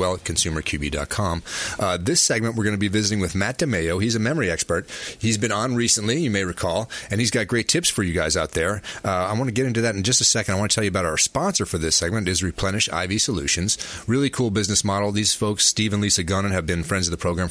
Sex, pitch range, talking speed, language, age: male, 90-110 Hz, 265 wpm, English, 30-49